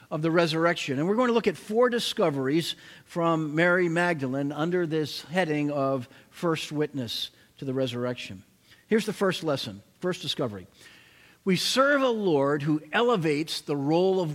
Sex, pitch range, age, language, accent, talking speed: male, 145-195 Hz, 50-69, English, American, 160 wpm